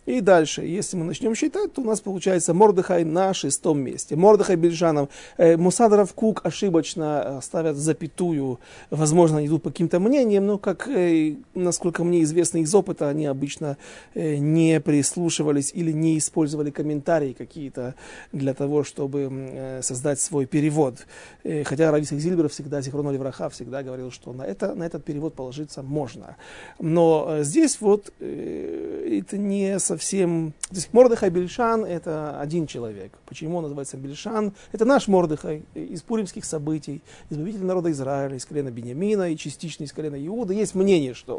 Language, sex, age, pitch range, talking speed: Russian, male, 40-59, 145-195 Hz, 155 wpm